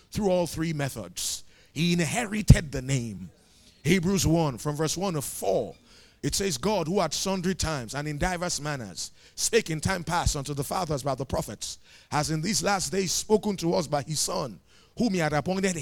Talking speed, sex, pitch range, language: 195 wpm, male, 145-190 Hz, English